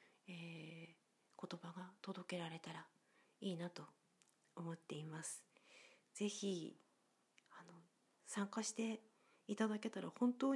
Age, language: 40-59, Japanese